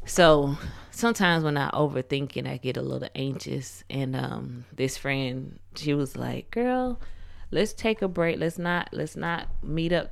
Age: 20-39